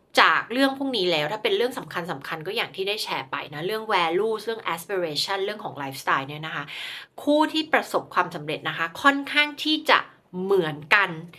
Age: 20-39